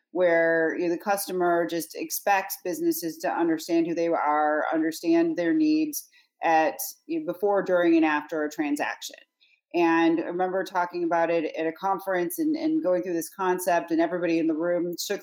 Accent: American